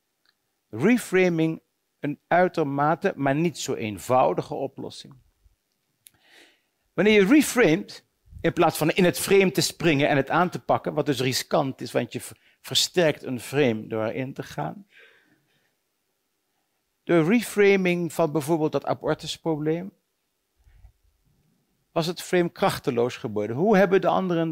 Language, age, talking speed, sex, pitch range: Dutch, 50-69, 125 wpm, male, 135-190 Hz